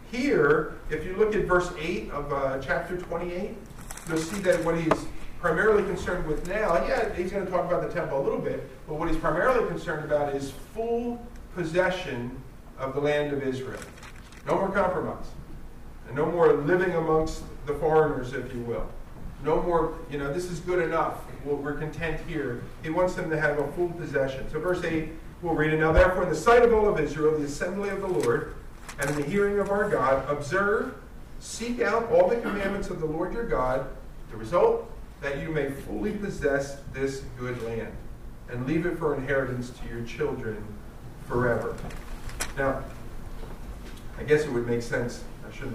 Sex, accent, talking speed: male, American, 190 wpm